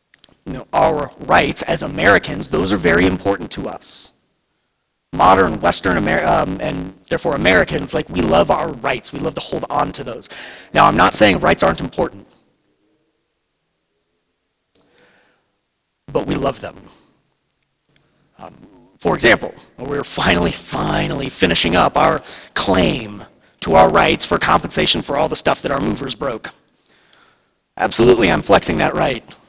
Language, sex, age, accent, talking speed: English, male, 40-59, American, 140 wpm